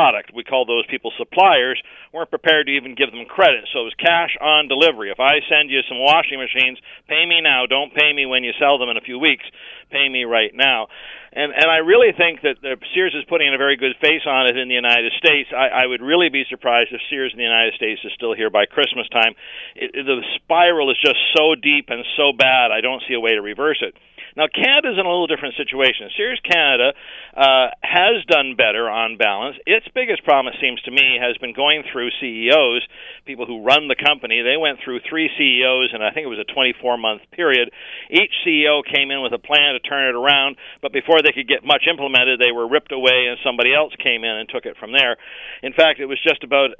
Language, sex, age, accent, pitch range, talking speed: English, male, 50-69, American, 125-155 Hz, 235 wpm